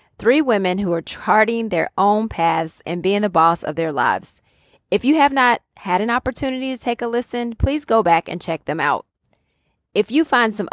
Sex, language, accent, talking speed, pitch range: female, English, American, 205 wpm, 170-230 Hz